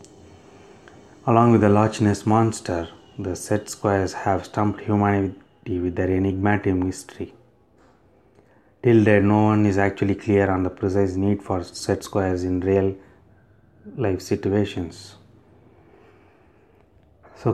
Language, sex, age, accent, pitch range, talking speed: English, male, 30-49, Indian, 95-110 Hz, 115 wpm